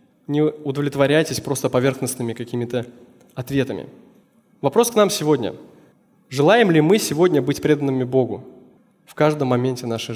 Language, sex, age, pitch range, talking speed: Russian, male, 20-39, 130-175 Hz, 125 wpm